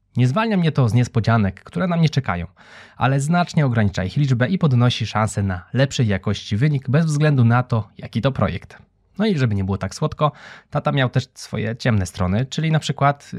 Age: 20-39